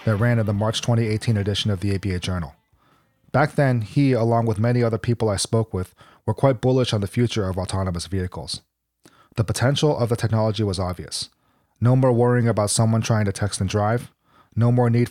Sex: male